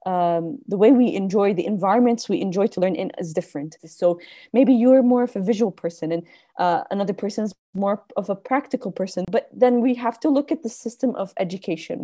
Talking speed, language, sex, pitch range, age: 210 wpm, English, female, 180-230 Hz, 20-39